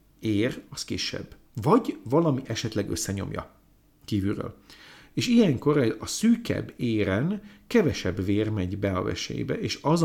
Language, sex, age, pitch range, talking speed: Hungarian, male, 50-69, 105-150 Hz, 125 wpm